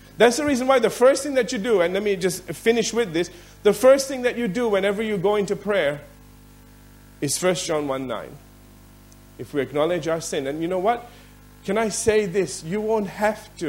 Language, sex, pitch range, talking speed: English, male, 140-230 Hz, 225 wpm